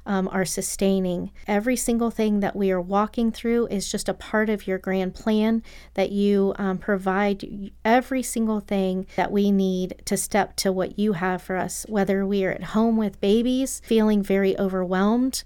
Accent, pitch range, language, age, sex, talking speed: American, 190-215 Hz, English, 40-59, female, 180 wpm